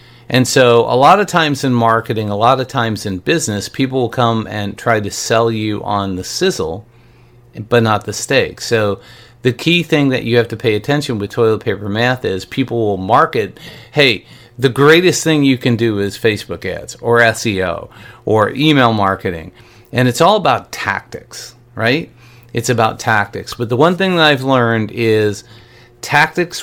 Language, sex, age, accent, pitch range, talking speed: English, male, 40-59, American, 110-125 Hz, 180 wpm